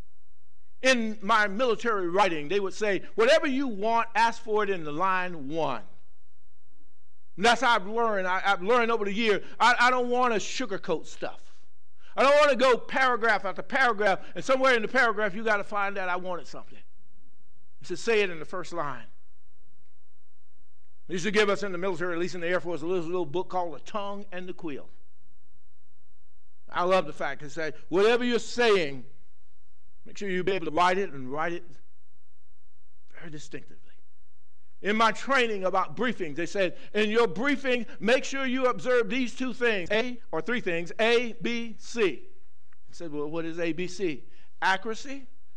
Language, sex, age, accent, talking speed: English, male, 50-69, American, 190 wpm